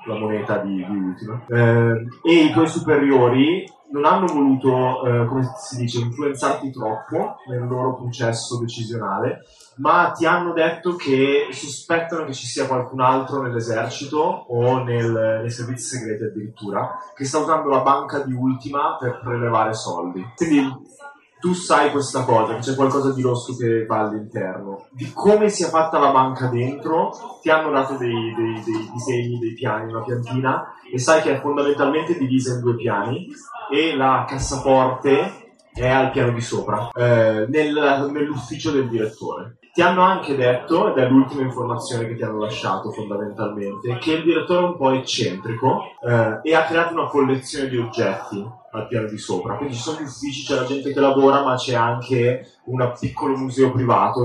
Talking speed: 165 wpm